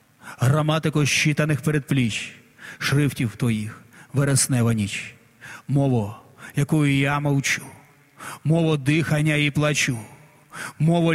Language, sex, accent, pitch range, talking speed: Ukrainian, male, native, 120-155 Hz, 85 wpm